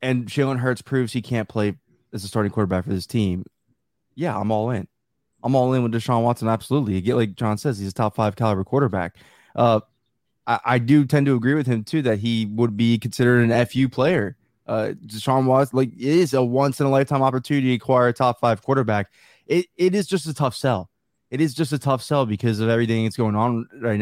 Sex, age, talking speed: male, 20-39, 230 wpm